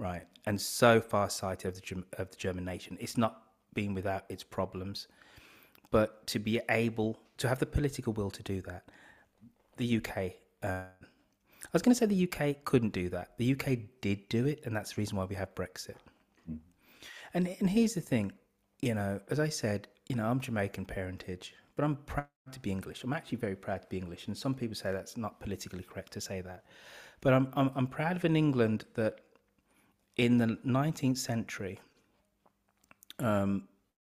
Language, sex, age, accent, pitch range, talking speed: English, male, 30-49, British, 95-125 Hz, 190 wpm